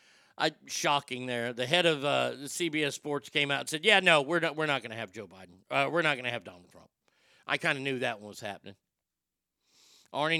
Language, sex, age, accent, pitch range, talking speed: English, male, 40-59, American, 145-235 Hz, 235 wpm